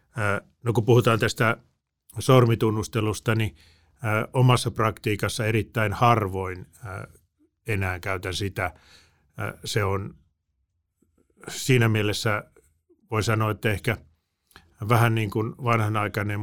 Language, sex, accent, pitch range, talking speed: Finnish, male, native, 95-115 Hz, 90 wpm